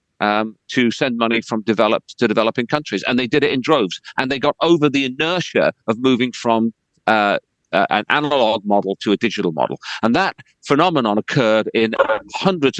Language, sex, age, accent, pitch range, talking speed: English, male, 40-59, British, 110-150 Hz, 185 wpm